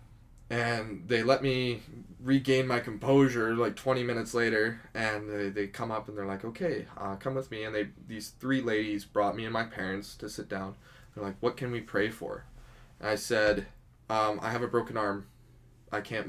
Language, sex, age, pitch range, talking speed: English, male, 10-29, 105-120 Hz, 205 wpm